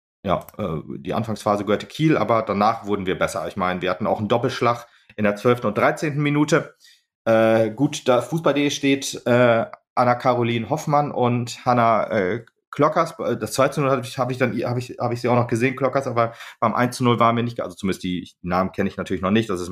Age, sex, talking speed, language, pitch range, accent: 30-49, male, 215 wpm, German, 105-125 Hz, German